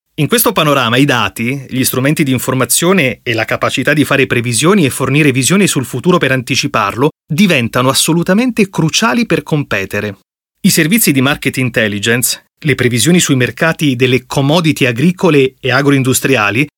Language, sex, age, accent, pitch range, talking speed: Italian, male, 30-49, native, 125-165 Hz, 145 wpm